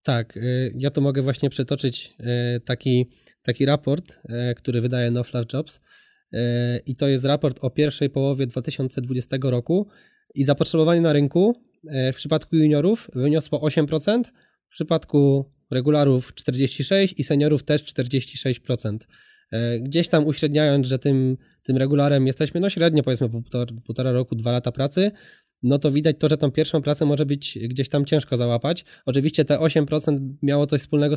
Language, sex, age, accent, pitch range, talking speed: Polish, male, 20-39, native, 130-155 Hz, 150 wpm